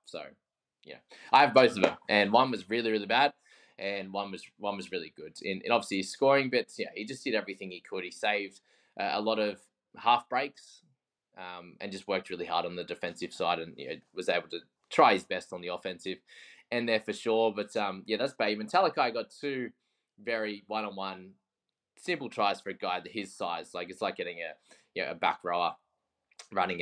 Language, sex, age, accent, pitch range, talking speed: English, male, 20-39, Australian, 100-135 Hz, 215 wpm